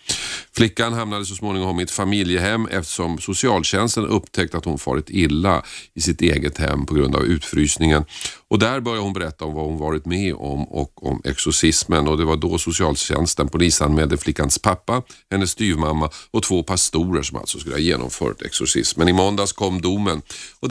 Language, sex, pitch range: Swedish, male, 80-105 Hz